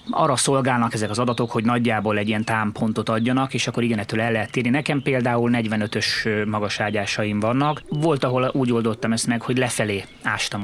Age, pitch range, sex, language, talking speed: 20-39, 105-120 Hz, male, Hungarian, 180 wpm